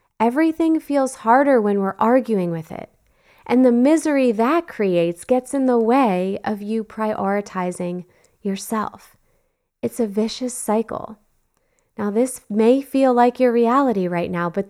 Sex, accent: female, American